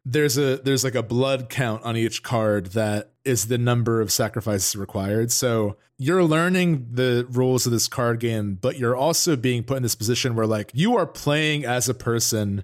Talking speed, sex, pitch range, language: 200 wpm, male, 110-130 Hz, English